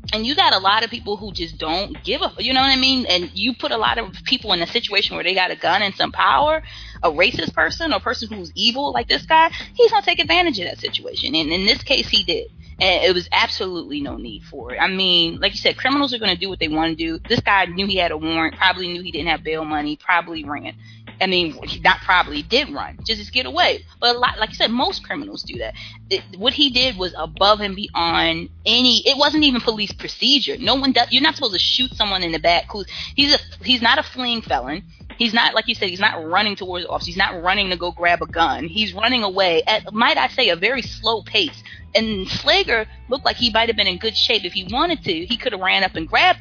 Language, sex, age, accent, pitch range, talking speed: English, female, 20-39, American, 175-255 Hz, 265 wpm